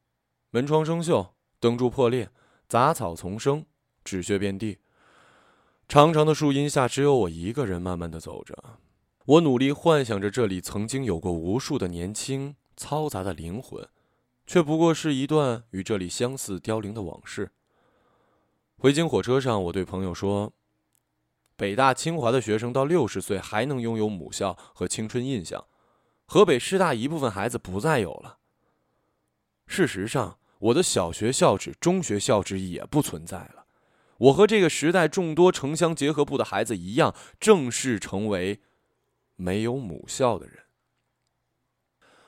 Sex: male